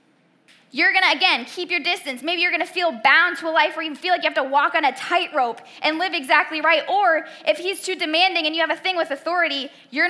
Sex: female